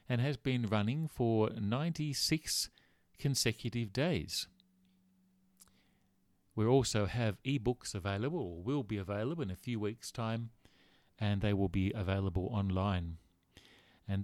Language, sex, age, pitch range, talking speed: English, male, 40-59, 95-130 Hz, 120 wpm